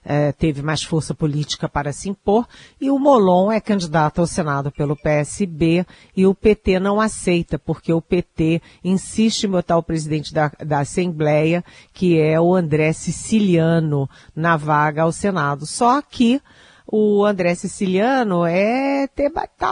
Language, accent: Portuguese, Brazilian